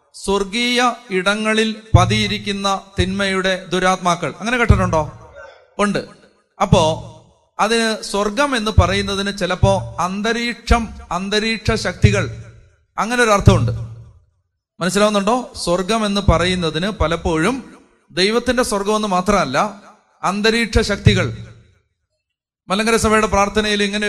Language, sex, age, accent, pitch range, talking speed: Malayalam, male, 30-49, native, 170-210 Hz, 80 wpm